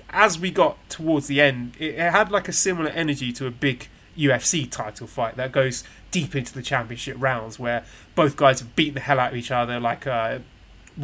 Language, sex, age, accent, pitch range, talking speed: English, male, 20-39, British, 130-170 Hz, 205 wpm